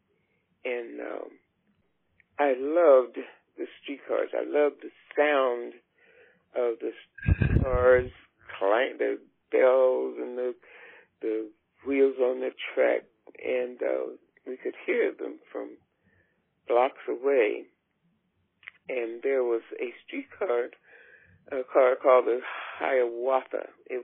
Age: 60-79